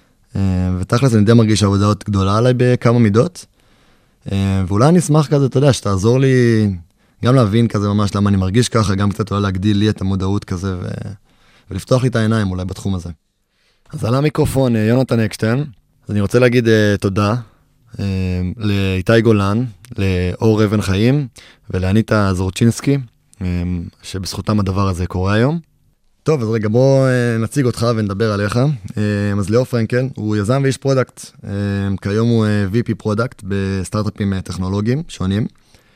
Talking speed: 150 wpm